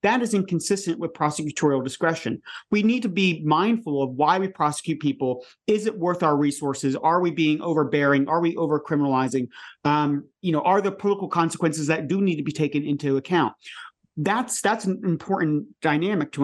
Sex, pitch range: male, 145-190 Hz